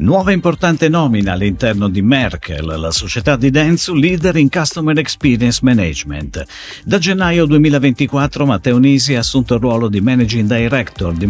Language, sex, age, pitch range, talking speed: Italian, male, 50-69, 100-155 Hz, 150 wpm